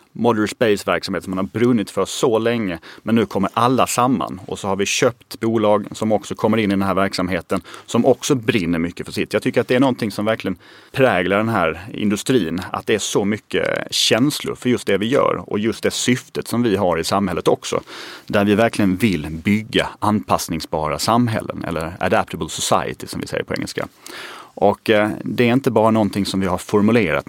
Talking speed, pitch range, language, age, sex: 205 wpm, 95-115 Hz, Swedish, 30-49, male